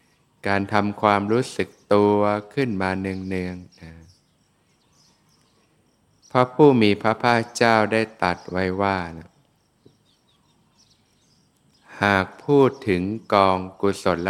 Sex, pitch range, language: male, 90-105 Hz, Thai